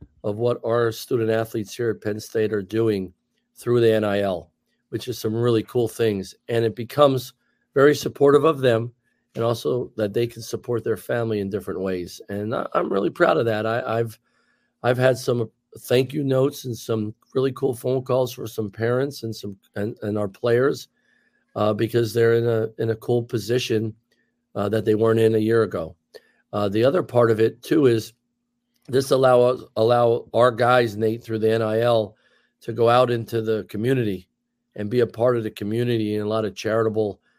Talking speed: 190 wpm